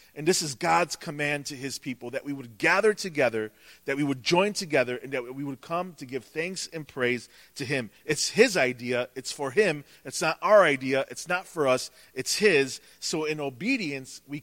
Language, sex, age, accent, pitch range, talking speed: English, male, 40-59, American, 125-170 Hz, 210 wpm